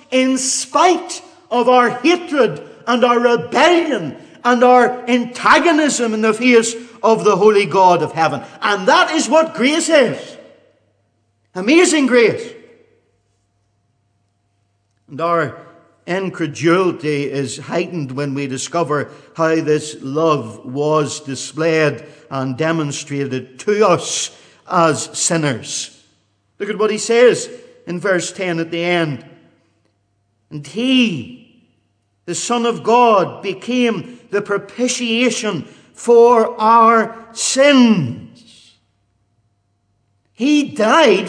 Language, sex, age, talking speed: English, male, 50-69, 105 wpm